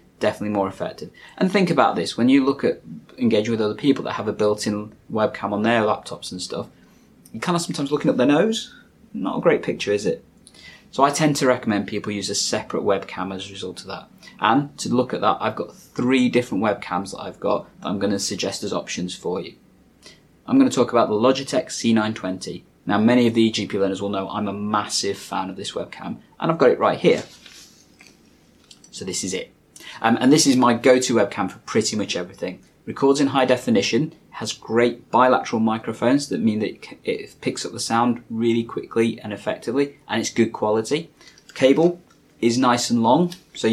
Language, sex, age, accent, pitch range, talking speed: English, male, 20-39, British, 105-130 Hz, 205 wpm